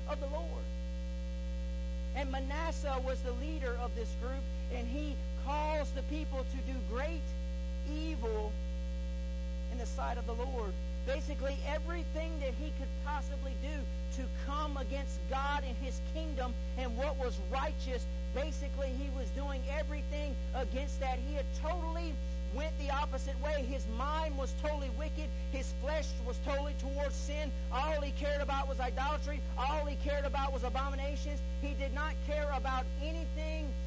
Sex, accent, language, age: male, American, English, 40-59